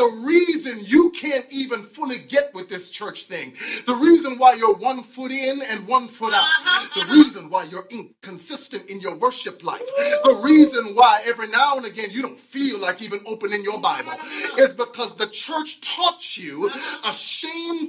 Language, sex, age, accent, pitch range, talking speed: English, male, 30-49, American, 230-330 Hz, 180 wpm